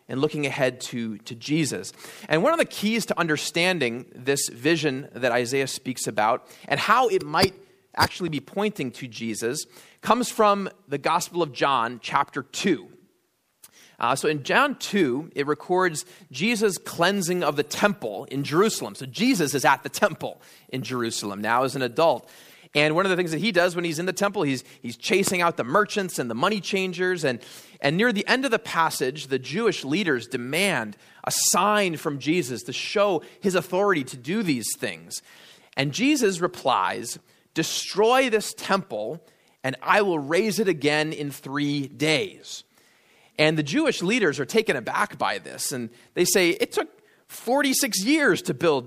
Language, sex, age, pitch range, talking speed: English, male, 30-49, 135-200 Hz, 175 wpm